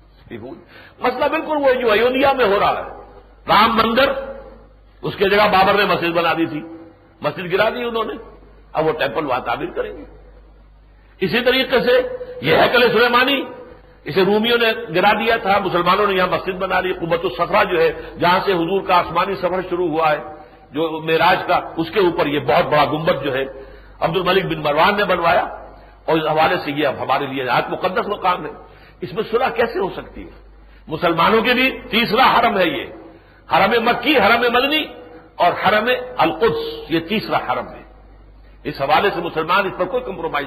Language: Urdu